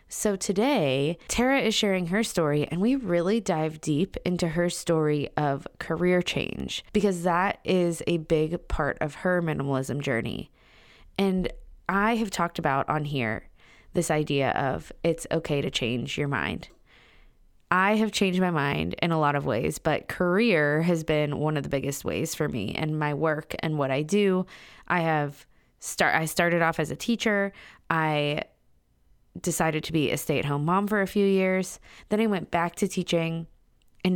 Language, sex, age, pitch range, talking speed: English, female, 20-39, 150-180 Hz, 175 wpm